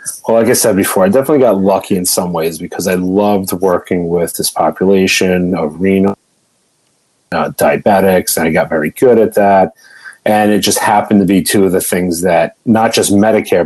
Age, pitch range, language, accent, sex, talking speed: 30-49, 90-100 Hz, English, American, male, 190 wpm